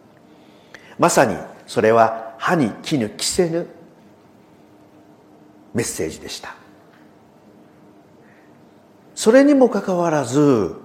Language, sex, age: Japanese, male, 50-69